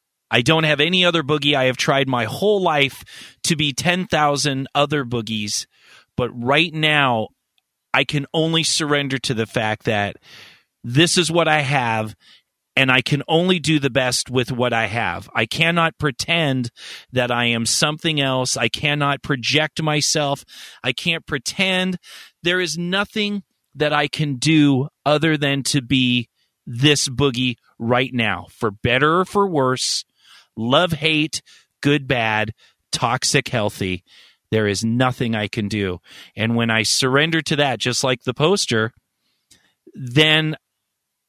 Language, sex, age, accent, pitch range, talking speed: English, male, 30-49, American, 120-155 Hz, 145 wpm